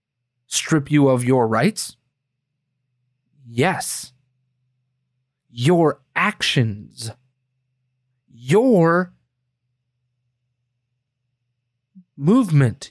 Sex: male